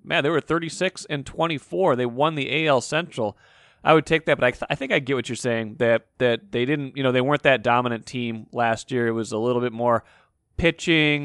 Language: English